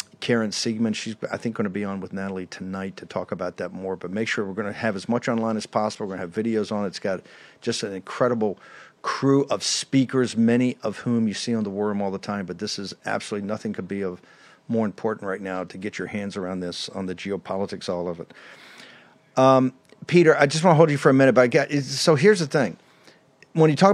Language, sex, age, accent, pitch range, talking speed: English, male, 50-69, American, 115-145 Hz, 250 wpm